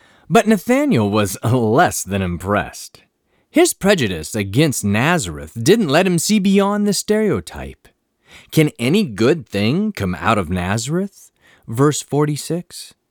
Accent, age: American, 30-49